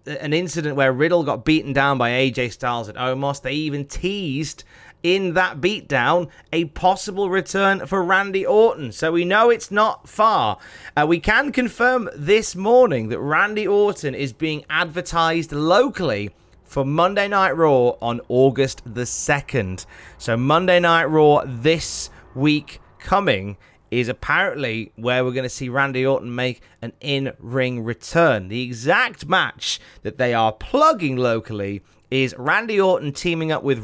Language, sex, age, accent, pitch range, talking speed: English, male, 30-49, British, 120-170 Hz, 150 wpm